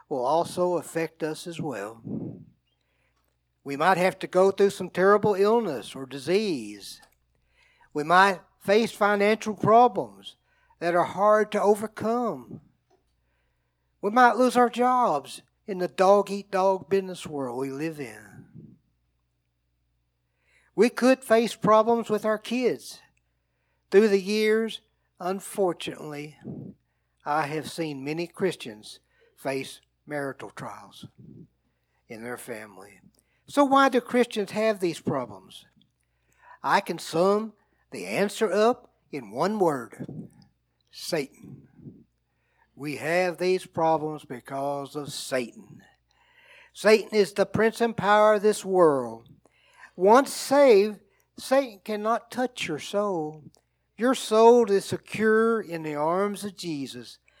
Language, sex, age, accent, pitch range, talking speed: English, male, 60-79, American, 140-215 Hz, 115 wpm